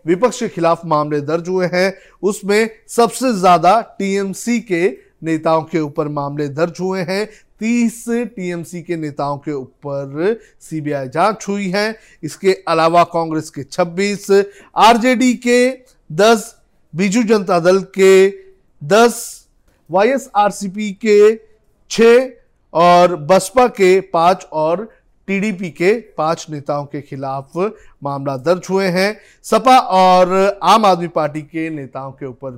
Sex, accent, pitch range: male, native, 160-215 Hz